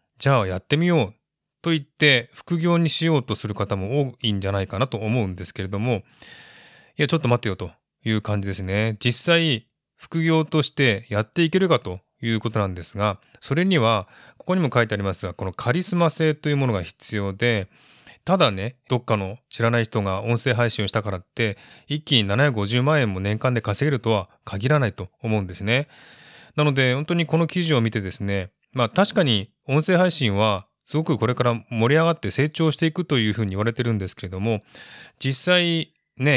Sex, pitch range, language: male, 105-150 Hz, Japanese